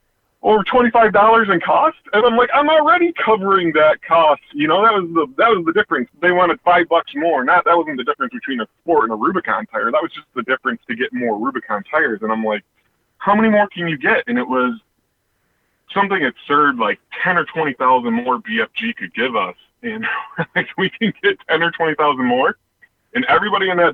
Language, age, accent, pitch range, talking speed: English, 20-39, American, 120-205 Hz, 215 wpm